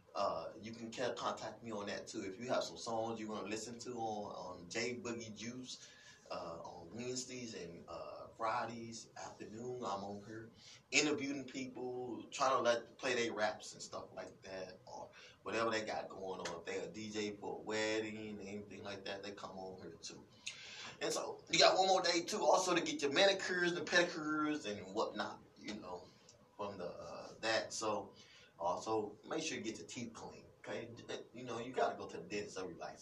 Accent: American